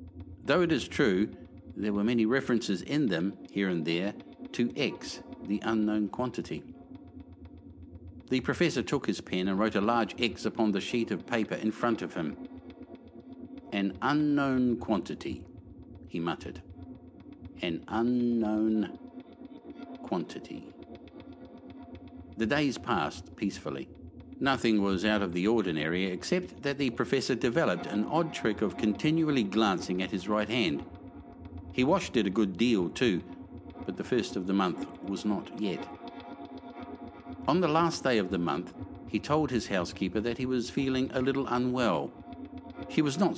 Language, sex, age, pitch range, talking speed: English, male, 60-79, 90-125 Hz, 150 wpm